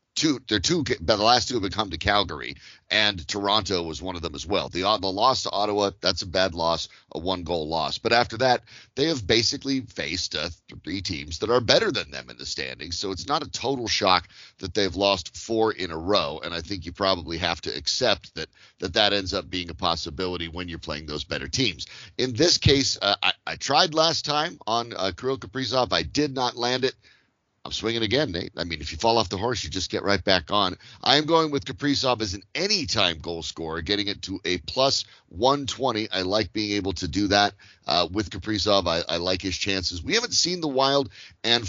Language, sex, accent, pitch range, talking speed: English, male, American, 85-115 Hz, 225 wpm